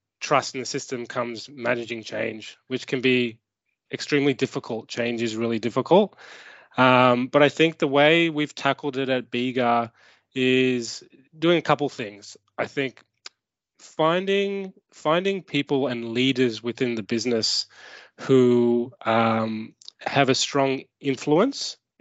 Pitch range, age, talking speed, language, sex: 120-140 Hz, 20-39, 130 wpm, English, male